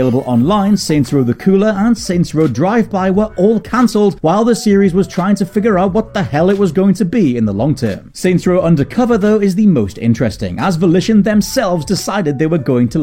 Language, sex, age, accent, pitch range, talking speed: English, male, 30-49, British, 140-205 Hz, 225 wpm